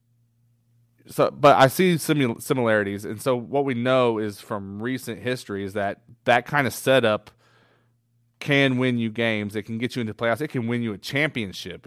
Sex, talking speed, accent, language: male, 180 wpm, American, English